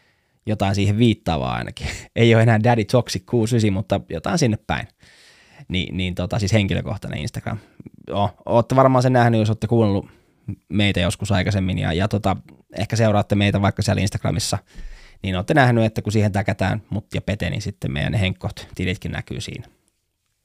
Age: 20-39